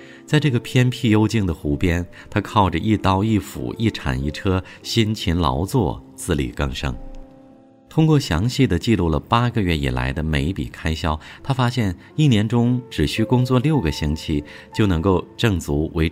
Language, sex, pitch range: Chinese, male, 75-115 Hz